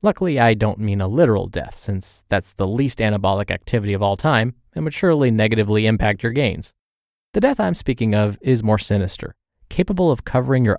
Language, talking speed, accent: English, 195 wpm, American